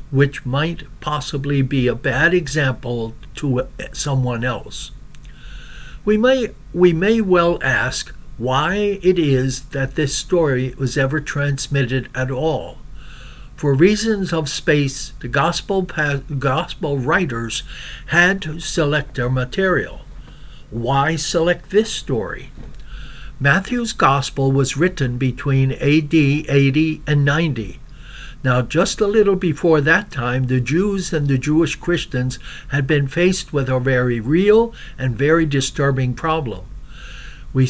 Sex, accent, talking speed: male, American, 125 wpm